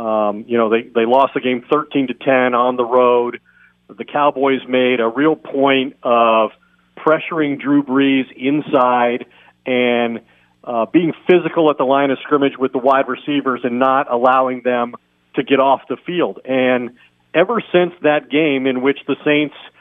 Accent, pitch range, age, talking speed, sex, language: American, 125-155 Hz, 50-69, 170 wpm, male, English